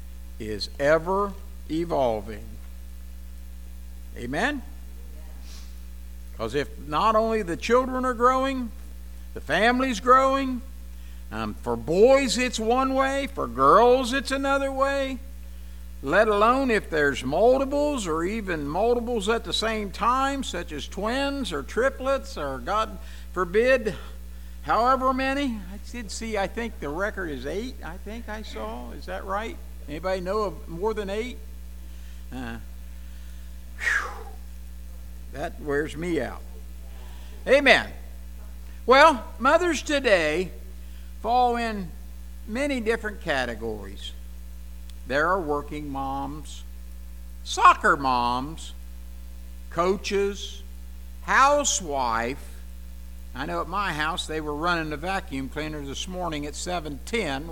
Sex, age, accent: male, 60-79, American